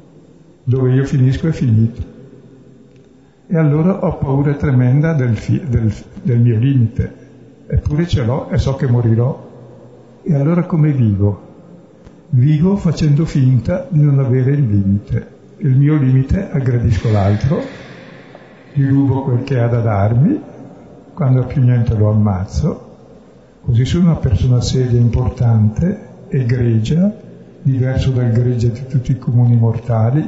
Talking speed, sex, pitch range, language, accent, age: 135 wpm, male, 115-140 Hz, Italian, native, 60-79